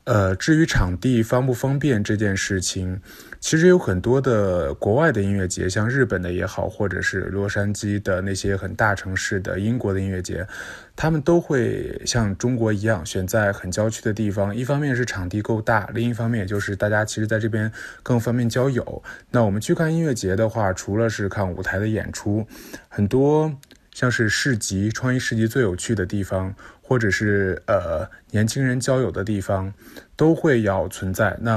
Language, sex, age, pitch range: Chinese, male, 20-39, 100-125 Hz